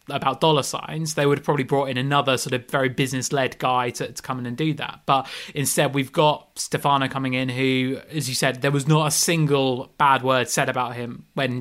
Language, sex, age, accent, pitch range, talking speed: English, male, 20-39, British, 130-150 Hz, 235 wpm